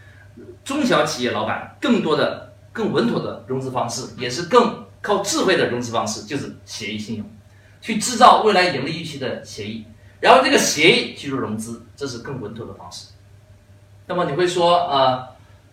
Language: Chinese